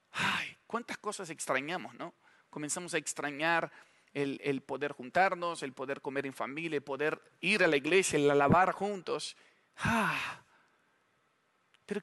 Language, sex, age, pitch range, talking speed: English, male, 40-59, 155-195 Hz, 135 wpm